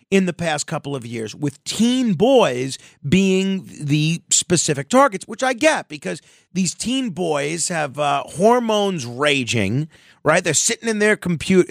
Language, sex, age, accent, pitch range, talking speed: English, male, 40-59, American, 150-200 Hz, 155 wpm